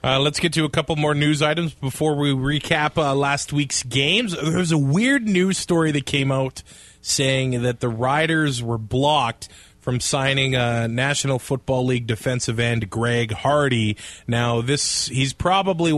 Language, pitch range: English, 125-165 Hz